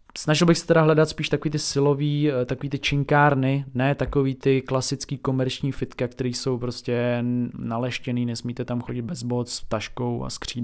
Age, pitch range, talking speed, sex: 20-39, 125-145 Hz, 175 wpm, male